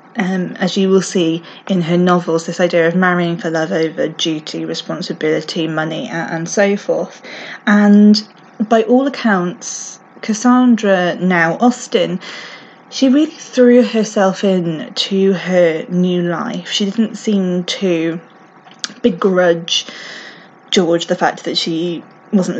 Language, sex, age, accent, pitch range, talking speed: English, female, 20-39, British, 175-215 Hz, 130 wpm